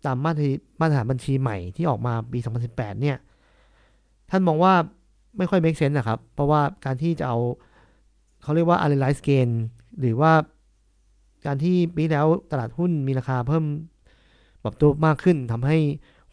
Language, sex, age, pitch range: Thai, male, 50-69, 125-160 Hz